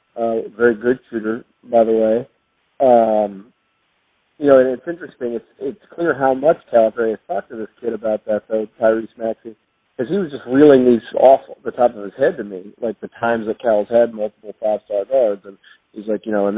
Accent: American